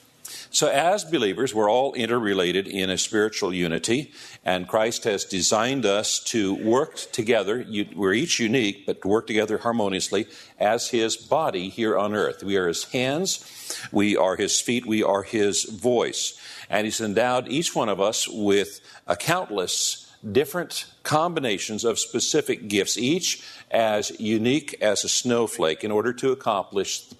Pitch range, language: 105-130 Hz, English